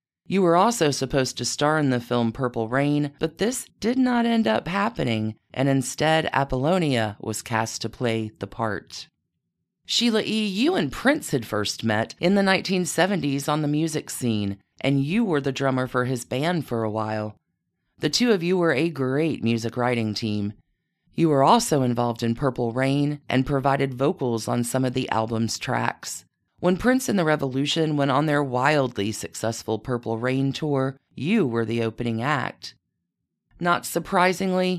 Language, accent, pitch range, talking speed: English, American, 120-180 Hz, 170 wpm